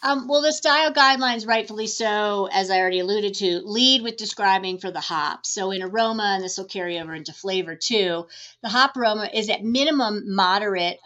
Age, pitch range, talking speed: 30-49, 180-230 Hz, 195 wpm